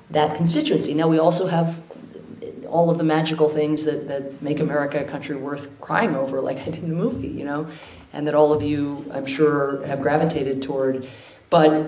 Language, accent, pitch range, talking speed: English, American, 135-155 Hz, 195 wpm